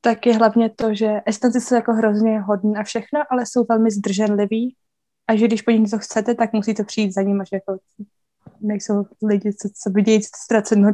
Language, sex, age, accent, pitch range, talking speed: Czech, female, 20-39, native, 200-225 Hz, 185 wpm